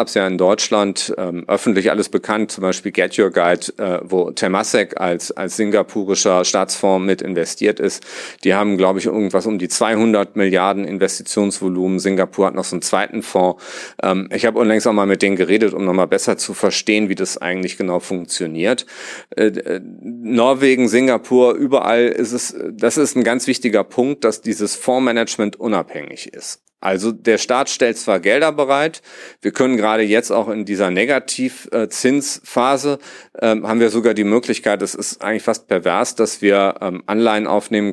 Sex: male